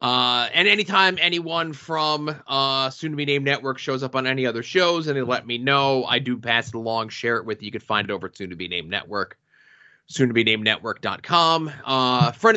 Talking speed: 235 wpm